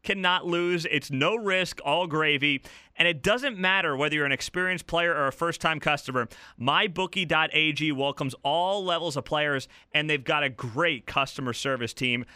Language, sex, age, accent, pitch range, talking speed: English, male, 30-49, American, 145-195 Hz, 165 wpm